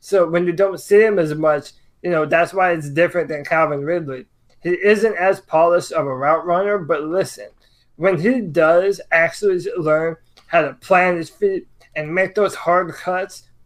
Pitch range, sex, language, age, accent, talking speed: 155-195 Hz, male, English, 20-39, American, 185 wpm